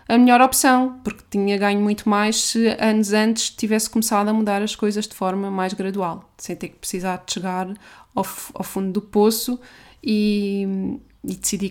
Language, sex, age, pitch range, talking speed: Portuguese, female, 20-39, 200-230 Hz, 180 wpm